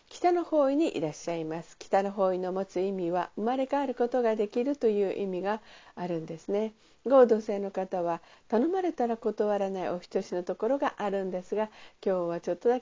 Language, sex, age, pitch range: Japanese, female, 50-69, 190-255 Hz